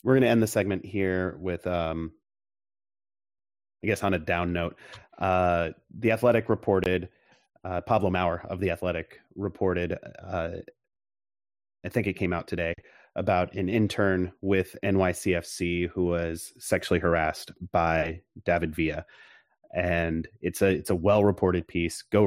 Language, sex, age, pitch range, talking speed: English, male, 30-49, 85-95 Hz, 145 wpm